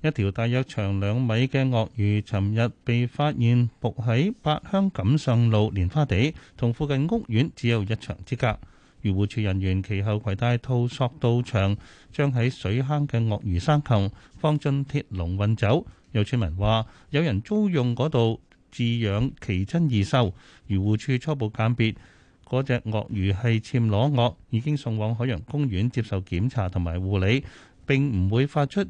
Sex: male